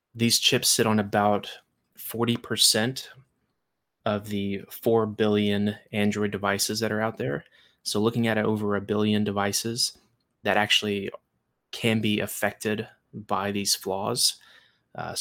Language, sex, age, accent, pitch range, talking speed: English, male, 20-39, American, 100-110 Hz, 130 wpm